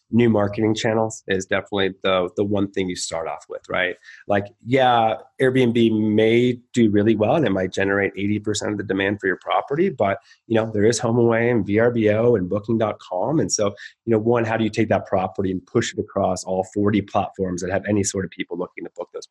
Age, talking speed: 30-49, 220 wpm